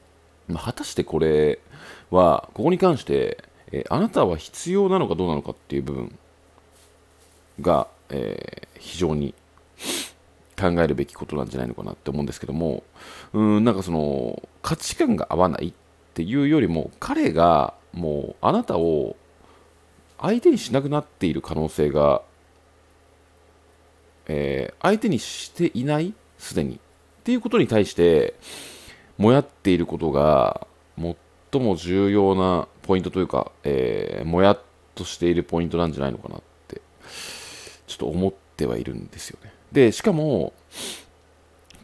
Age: 40-59